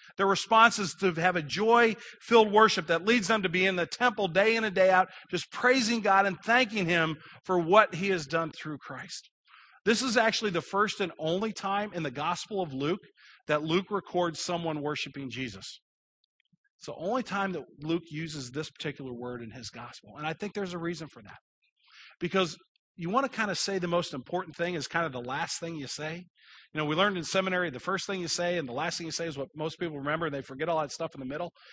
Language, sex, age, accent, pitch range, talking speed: English, male, 40-59, American, 145-195 Hz, 235 wpm